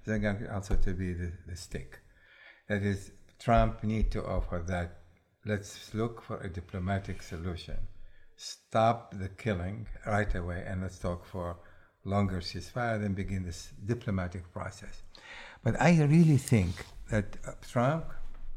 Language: English